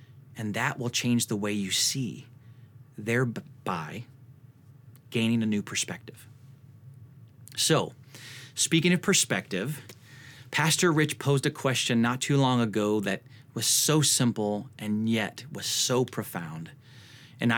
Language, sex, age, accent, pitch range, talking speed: English, male, 30-49, American, 120-135 Hz, 125 wpm